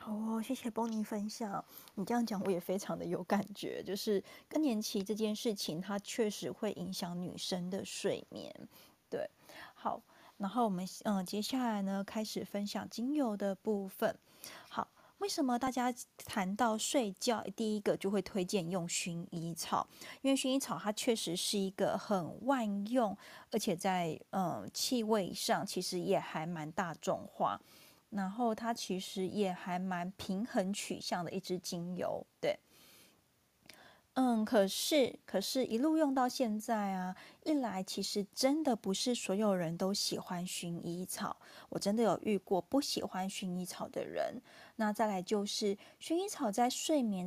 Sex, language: female, Chinese